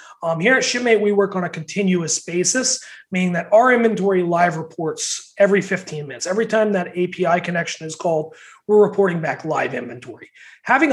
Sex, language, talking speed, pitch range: male, English, 175 wpm, 175-220 Hz